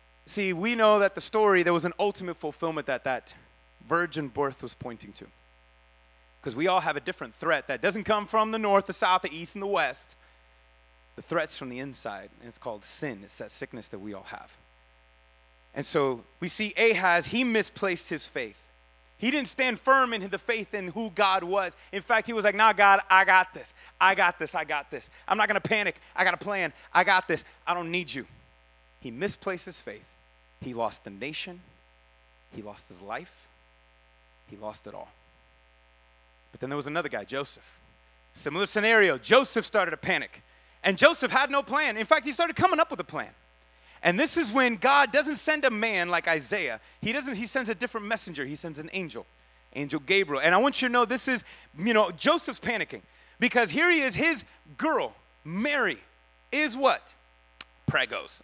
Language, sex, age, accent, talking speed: English, male, 30-49, American, 200 wpm